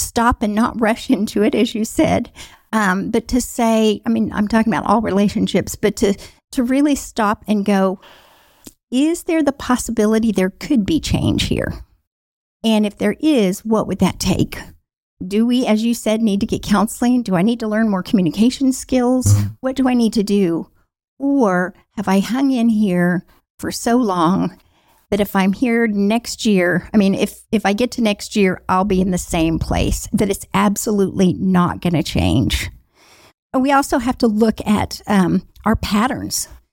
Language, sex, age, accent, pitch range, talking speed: English, female, 50-69, American, 195-240 Hz, 185 wpm